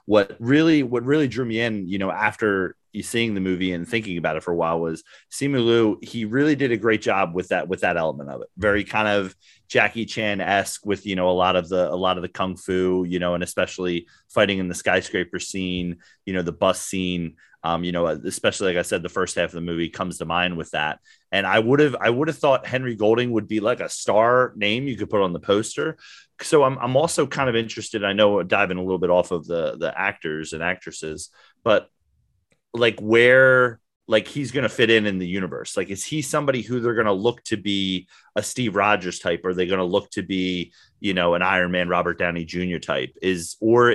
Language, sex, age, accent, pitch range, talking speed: English, male, 30-49, American, 90-115 Hz, 240 wpm